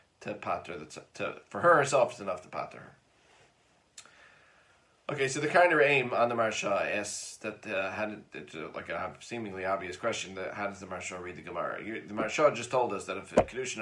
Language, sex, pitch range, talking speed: English, male, 95-115 Hz, 215 wpm